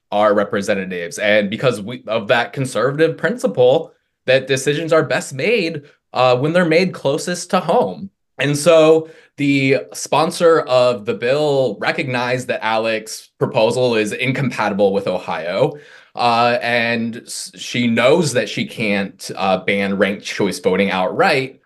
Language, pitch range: English, 115-150 Hz